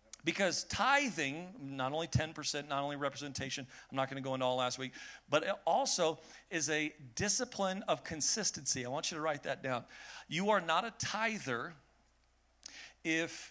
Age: 40-59